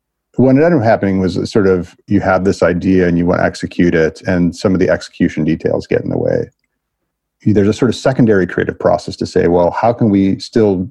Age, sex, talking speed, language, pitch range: 40-59, male, 225 wpm, English, 85-95 Hz